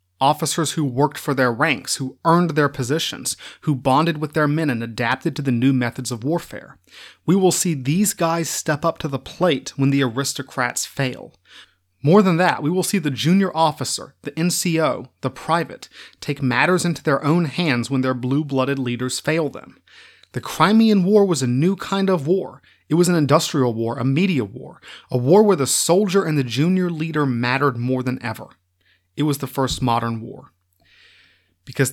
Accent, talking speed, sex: American, 185 wpm, male